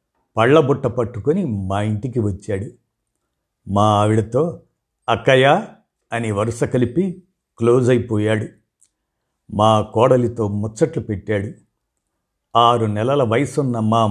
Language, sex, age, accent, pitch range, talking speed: Telugu, male, 50-69, native, 105-140 Hz, 90 wpm